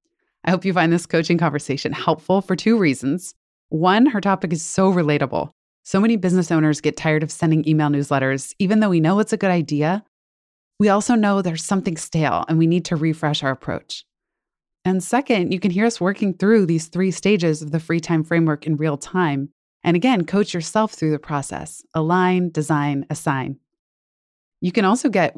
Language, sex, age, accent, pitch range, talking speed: English, female, 20-39, American, 150-185 Hz, 190 wpm